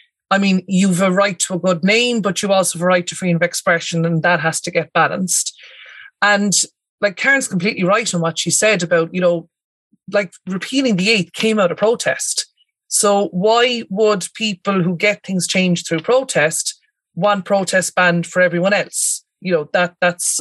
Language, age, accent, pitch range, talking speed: English, 30-49, Irish, 170-205 Hz, 195 wpm